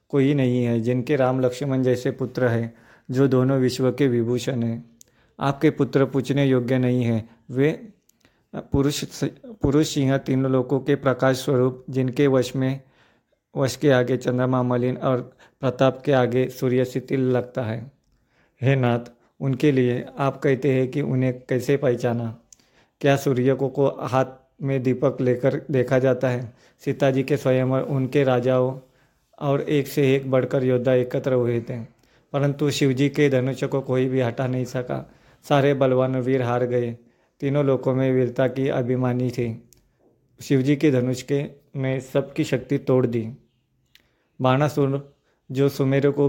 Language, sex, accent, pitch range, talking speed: Hindi, male, native, 125-140 Hz, 150 wpm